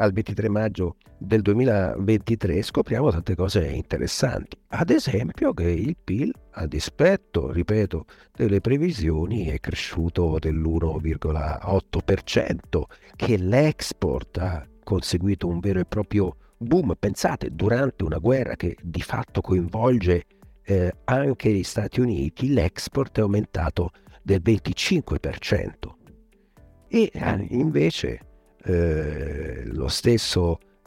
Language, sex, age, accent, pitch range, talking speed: Italian, male, 50-69, native, 85-110 Hz, 105 wpm